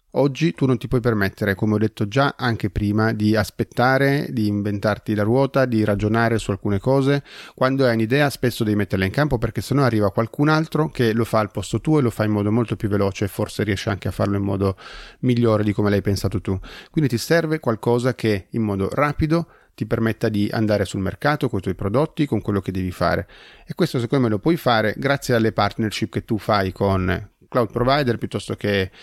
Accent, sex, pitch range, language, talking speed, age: native, male, 100-130 Hz, Italian, 215 wpm, 30-49